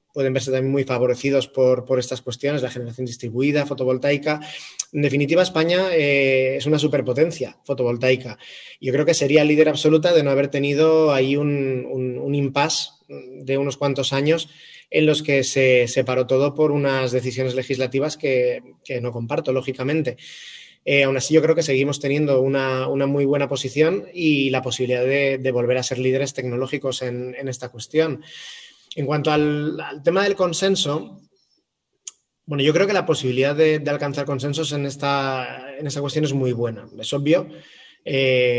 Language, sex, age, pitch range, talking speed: Spanish, male, 20-39, 130-145 Hz, 170 wpm